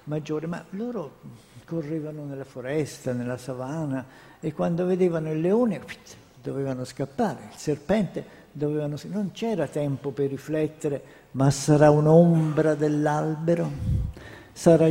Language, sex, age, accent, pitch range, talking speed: Italian, male, 60-79, native, 120-160 Hz, 115 wpm